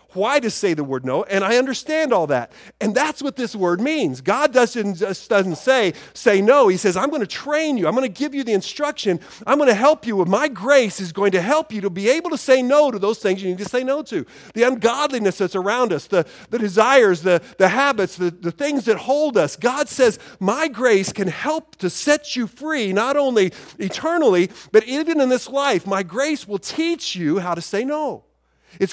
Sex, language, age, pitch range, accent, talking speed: male, English, 40-59, 180-270 Hz, American, 230 wpm